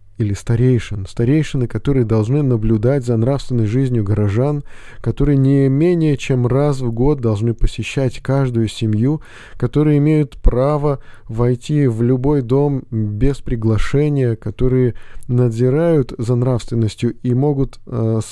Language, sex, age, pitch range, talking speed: Russian, male, 20-39, 110-135 Hz, 120 wpm